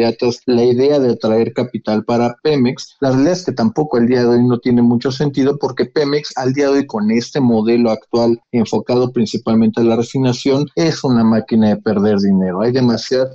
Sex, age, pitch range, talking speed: male, 40-59, 115-140 Hz, 195 wpm